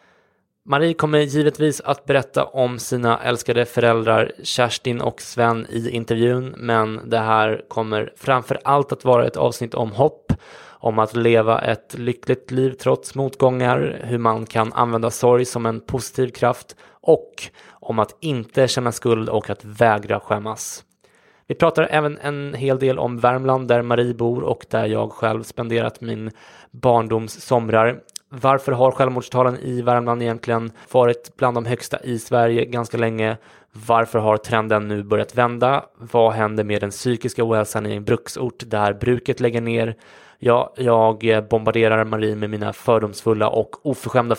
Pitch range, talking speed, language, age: 110-130 Hz, 155 wpm, English, 20-39